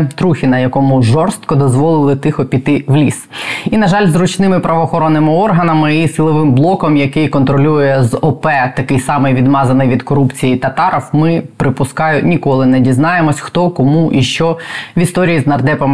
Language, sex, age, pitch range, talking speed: Ukrainian, female, 20-39, 135-170 Hz, 150 wpm